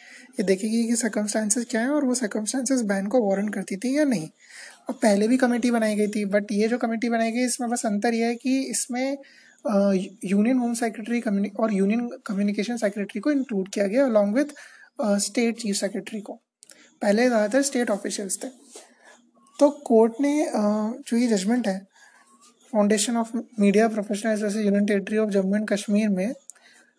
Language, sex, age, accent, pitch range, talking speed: Hindi, male, 20-39, native, 205-255 Hz, 170 wpm